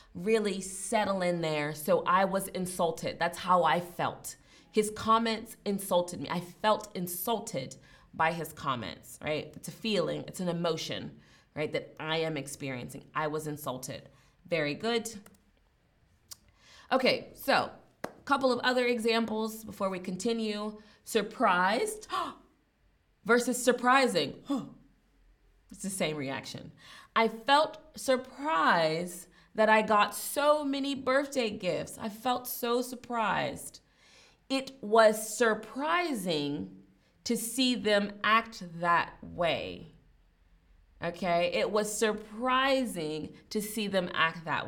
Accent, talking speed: American, 120 wpm